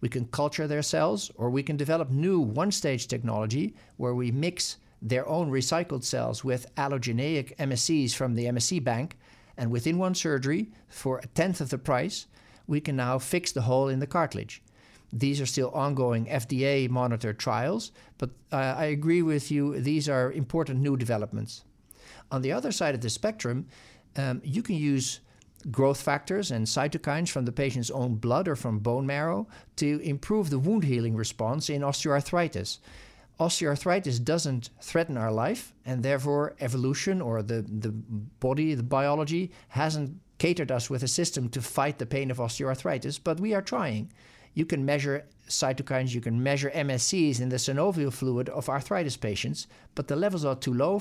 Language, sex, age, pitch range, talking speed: English, male, 50-69, 120-150 Hz, 170 wpm